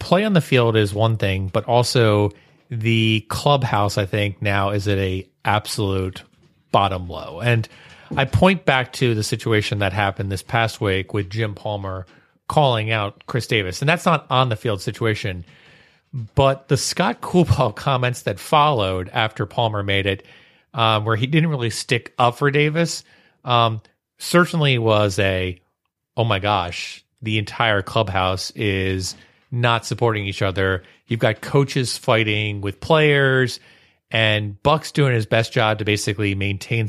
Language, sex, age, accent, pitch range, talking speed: English, male, 30-49, American, 100-125 Hz, 155 wpm